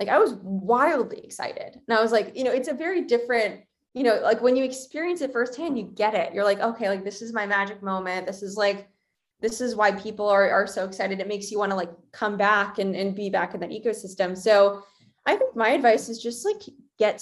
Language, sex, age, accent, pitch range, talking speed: English, female, 20-39, American, 200-260 Hz, 245 wpm